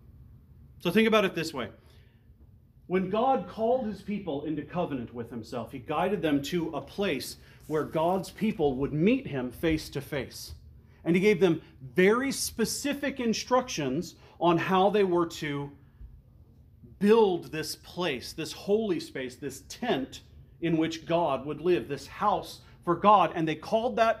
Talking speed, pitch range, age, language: 155 wpm, 160-235 Hz, 40-59, English